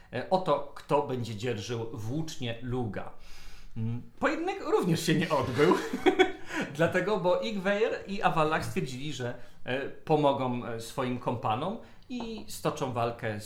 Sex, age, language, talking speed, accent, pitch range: male, 40-59, Polish, 110 wpm, native, 115-160 Hz